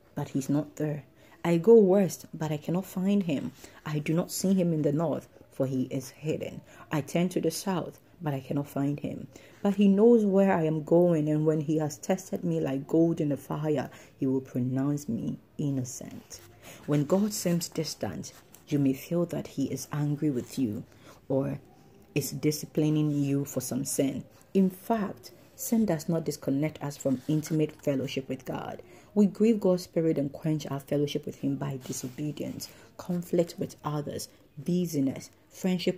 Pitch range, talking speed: 135-170 Hz, 175 wpm